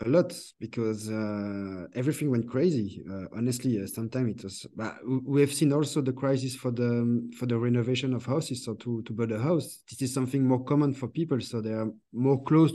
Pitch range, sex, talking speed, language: 110-140 Hz, male, 210 wpm, English